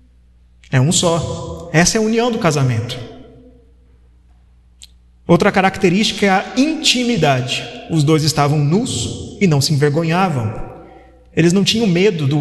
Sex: male